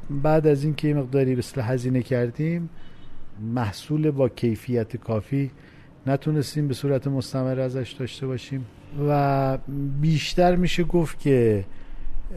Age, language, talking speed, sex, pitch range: 50-69, Persian, 120 wpm, male, 115-145 Hz